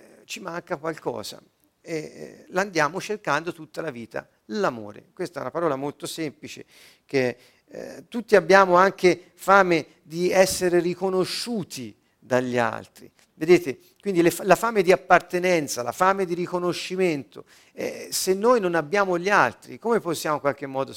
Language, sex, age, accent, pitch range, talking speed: Italian, male, 50-69, native, 135-180 Hz, 140 wpm